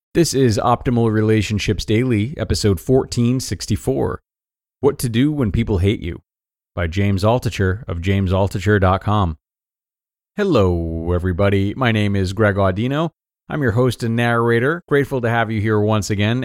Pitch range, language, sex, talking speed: 95-115 Hz, English, male, 140 wpm